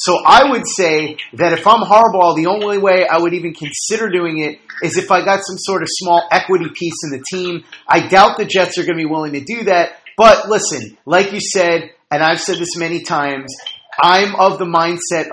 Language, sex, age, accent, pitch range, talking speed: English, male, 30-49, American, 150-190 Hz, 225 wpm